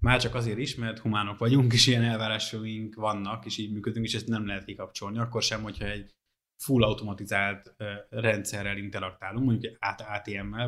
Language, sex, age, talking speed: Hungarian, male, 20-39, 165 wpm